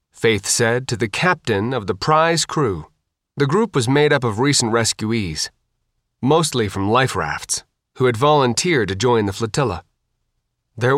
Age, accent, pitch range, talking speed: 30-49, American, 115-155 Hz, 160 wpm